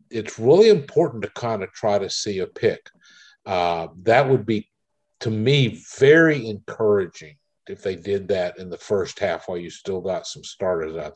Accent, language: American, English